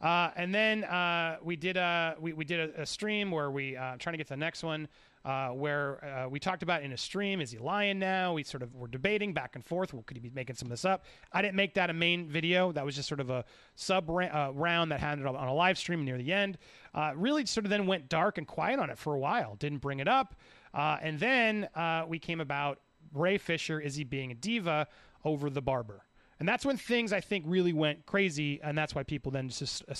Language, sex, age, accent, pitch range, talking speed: English, male, 30-49, American, 140-190 Hz, 260 wpm